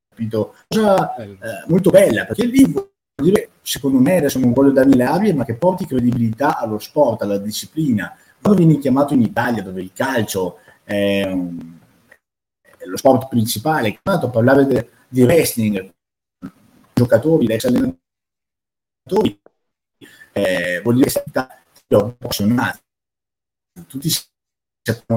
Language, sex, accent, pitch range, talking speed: Italian, male, native, 110-155 Hz, 130 wpm